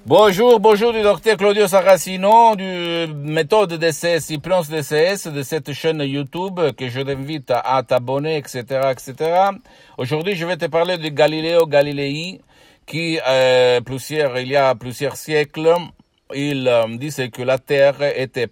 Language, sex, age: Italian, male, 50-69